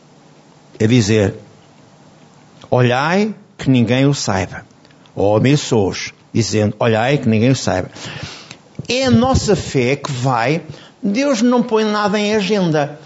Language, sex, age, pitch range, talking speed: Portuguese, male, 60-79, 145-210 Hz, 130 wpm